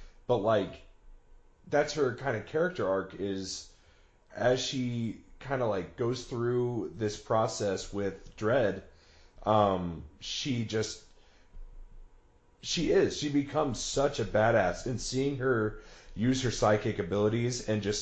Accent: American